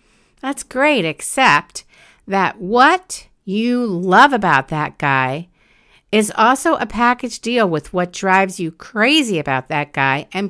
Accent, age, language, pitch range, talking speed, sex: American, 50-69, English, 160-225 Hz, 135 wpm, female